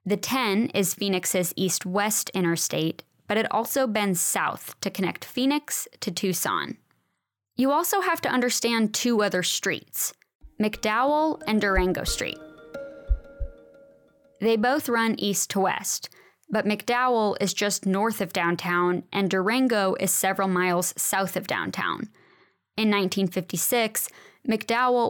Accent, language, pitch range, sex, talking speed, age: American, English, 190-235 Hz, female, 125 wpm, 20-39